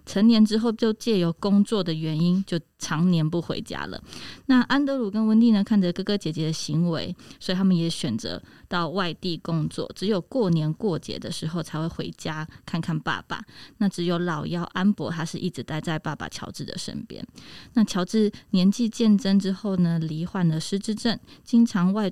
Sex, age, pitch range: female, 20-39, 170-210 Hz